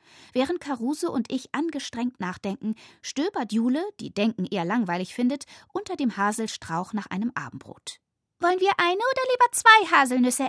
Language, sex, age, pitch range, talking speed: German, female, 20-39, 185-280 Hz, 150 wpm